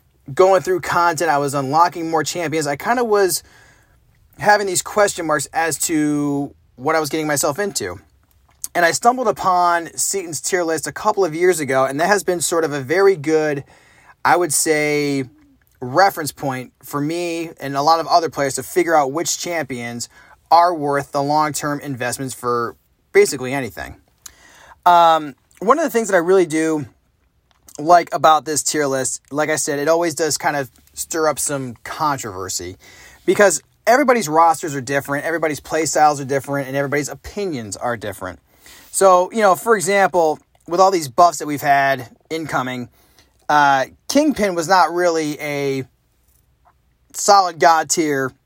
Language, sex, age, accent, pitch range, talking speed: English, male, 30-49, American, 140-180 Hz, 165 wpm